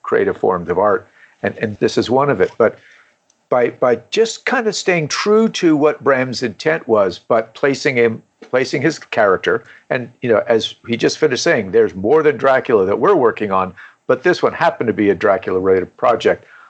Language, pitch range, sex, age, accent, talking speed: English, 110-160 Hz, male, 50-69, American, 200 wpm